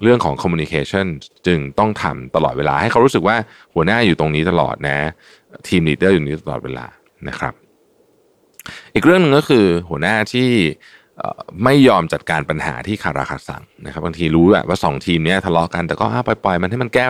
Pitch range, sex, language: 75-105 Hz, male, Thai